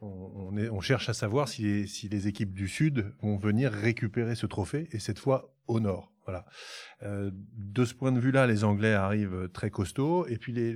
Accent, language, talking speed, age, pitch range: French, French, 205 wpm, 30-49, 100-120 Hz